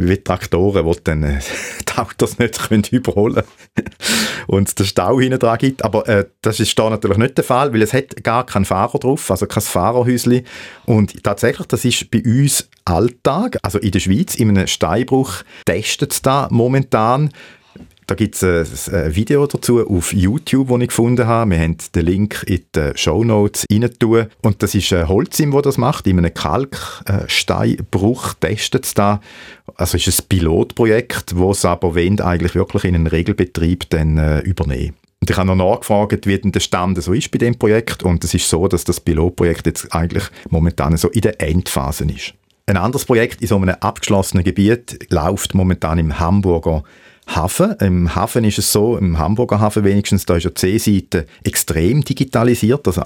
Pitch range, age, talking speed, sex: 90-115 Hz, 40-59, 180 wpm, male